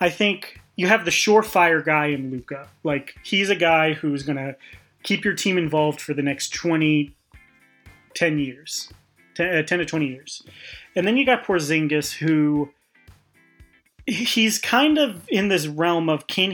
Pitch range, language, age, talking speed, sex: 145-175 Hz, English, 30-49, 160 wpm, male